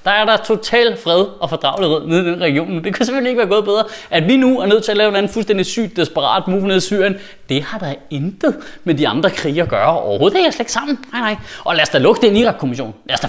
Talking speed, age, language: 295 wpm, 30-49, Danish